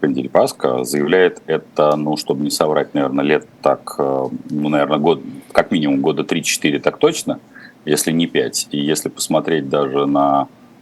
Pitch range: 70-85 Hz